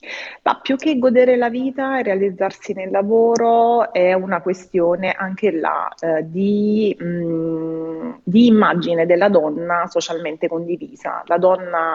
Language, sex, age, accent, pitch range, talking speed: Italian, female, 30-49, native, 160-195 Hz, 130 wpm